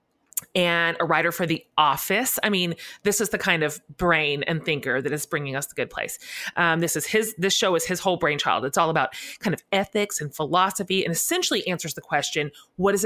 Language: English